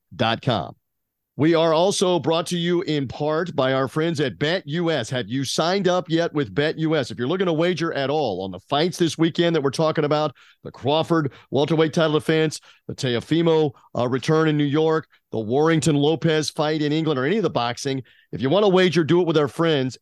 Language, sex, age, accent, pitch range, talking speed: English, male, 40-59, American, 140-180 Hz, 205 wpm